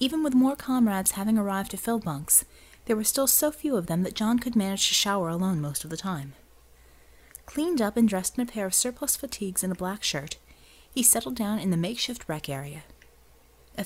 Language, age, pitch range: English, 30-49, 150-230 Hz